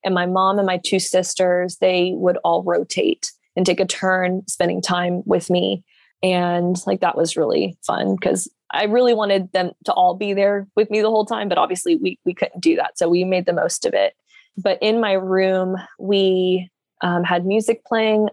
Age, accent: 20-39, American